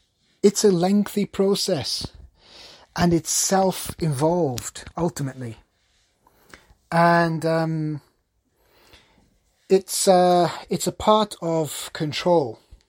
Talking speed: 80 wpm